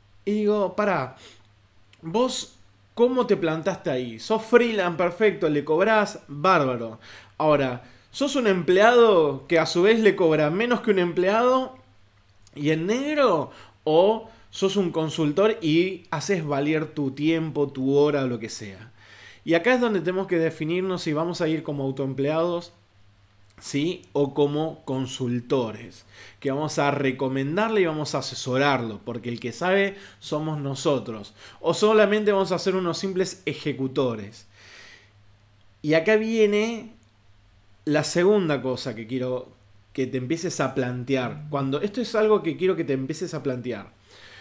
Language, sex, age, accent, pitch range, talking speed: Spanish, male, 20-39, Argentinian, 120-185 Hz, 145 wpm